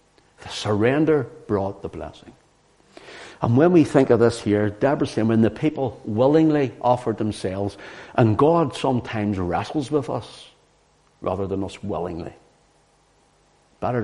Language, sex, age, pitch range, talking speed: English, male, 60-79, 100-130 Hz, 135 wpm